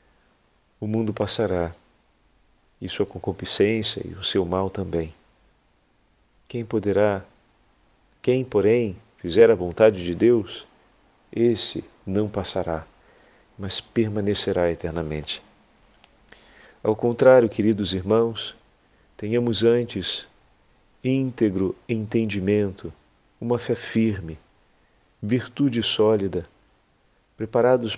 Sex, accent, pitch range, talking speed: male, Brazilian, 95-120 Hz, 85 wpm